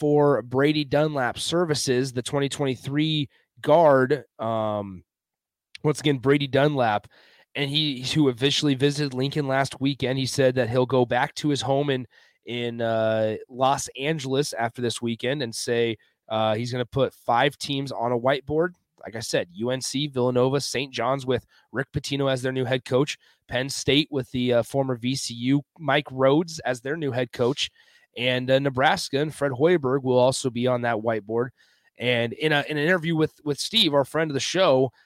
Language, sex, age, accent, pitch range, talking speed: English, male, 30-49, American, 120-145 Hz, 180 wpm